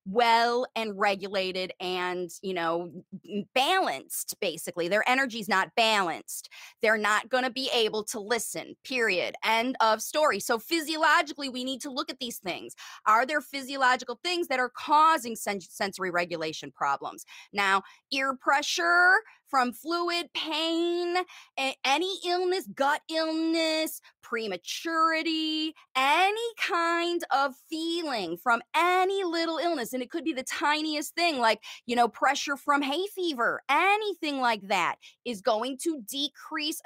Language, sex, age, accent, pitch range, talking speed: English, female, 20-39, American, 220-320 Hz, 135 wpm